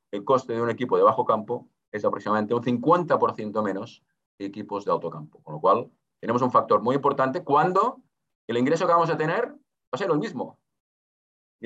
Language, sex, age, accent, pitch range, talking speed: Spanish, male, 30-49, Spanish, 115-155 Hz, 200 wpm